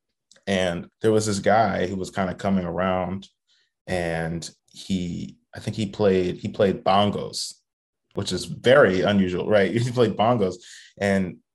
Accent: American